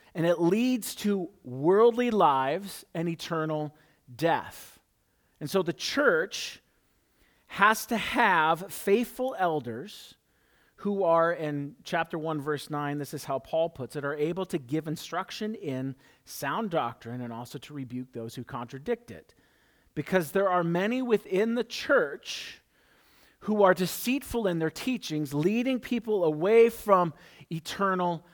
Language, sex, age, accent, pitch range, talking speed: English, male, 40-59, American, 155-220 Hz, 140 wpm